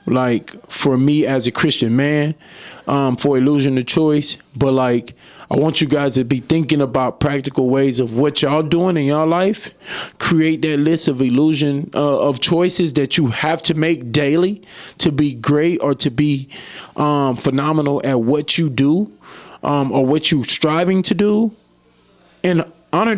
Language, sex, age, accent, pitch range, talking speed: English, male, 20-39, American, 130-160 Hz, 170 wpm